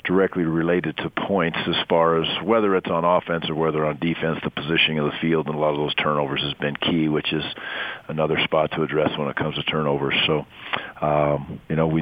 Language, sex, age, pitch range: English, male, 40-59, 80-90 Hz